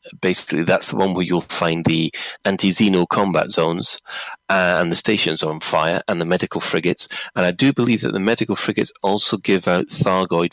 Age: 30-49